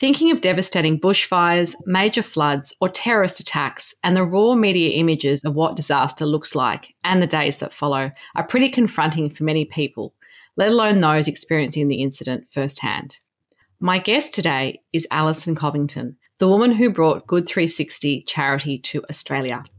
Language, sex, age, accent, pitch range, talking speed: English, female, 30-49, Australian, 145-180 Hz, 155 wpm